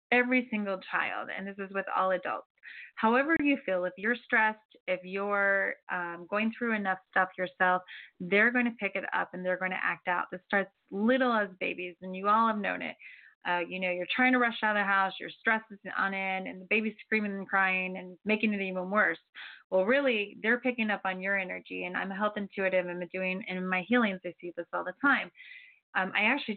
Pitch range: 185-225 Hz